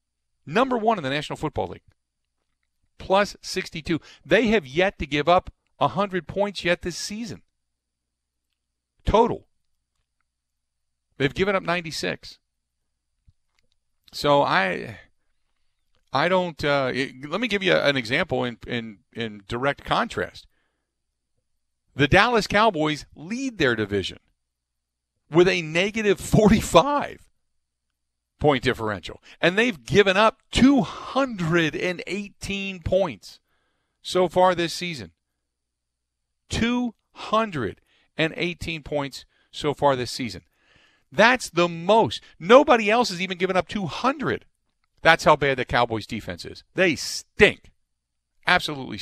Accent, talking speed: American, 110 wpm